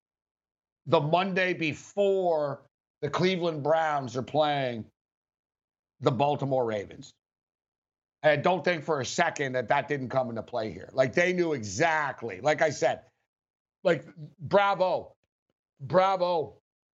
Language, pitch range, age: English, 155-200 Hz, 50-69